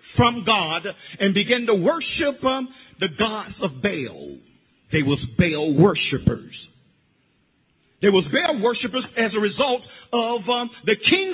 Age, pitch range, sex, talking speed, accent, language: 50-69, 190-290 Hz, male, 140 wpm, American, English